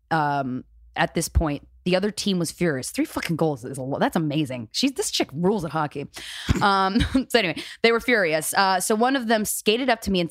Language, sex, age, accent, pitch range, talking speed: English, female, 20-39, American, 165-240 Hz, 210 wpm